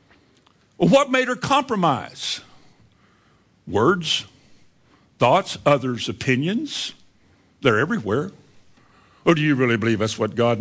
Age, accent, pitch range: 60-79, American, 115-170 Hz